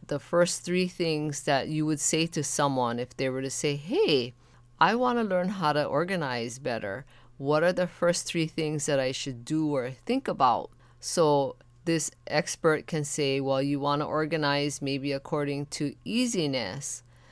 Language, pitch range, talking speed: English, 135-175 Hz, 175 wpm